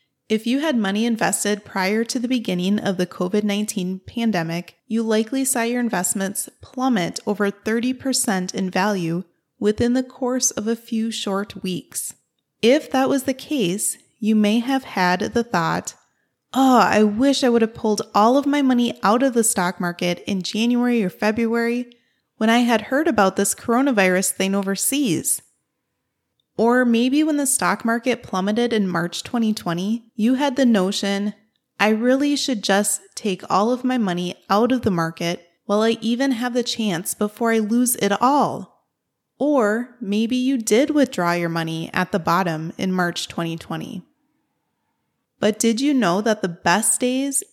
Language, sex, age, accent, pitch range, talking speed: English, female, 20-39, American, 195-250 Hz, 165 wpm